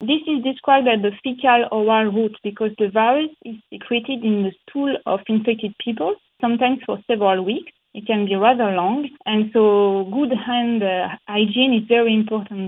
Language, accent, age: English, French, 30-49